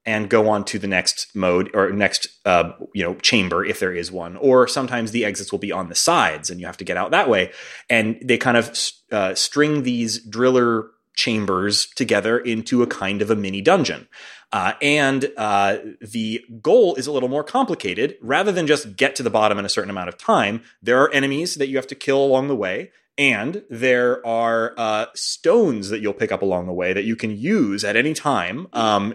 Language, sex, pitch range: English, male, 105-140 Hz